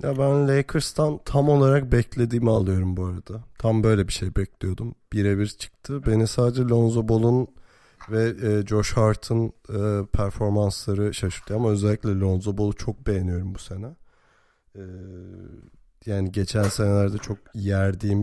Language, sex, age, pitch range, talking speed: Turkish, male, 30-49, 100-115 Hz, 125 wpm